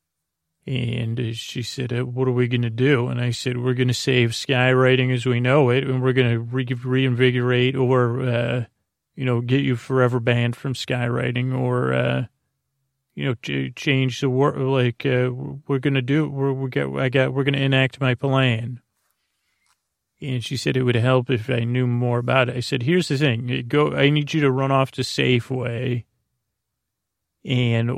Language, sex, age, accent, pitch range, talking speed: English, male, 30-49, American, 120-130 Hz, 185 wpm